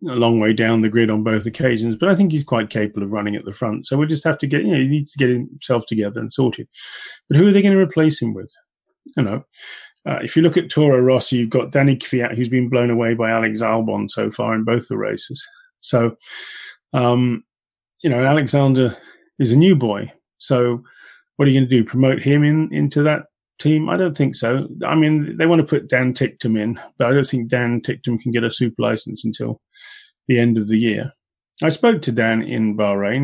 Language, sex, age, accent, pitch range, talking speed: English, male, 30-49, British, 115-150 Hz, 235 wpm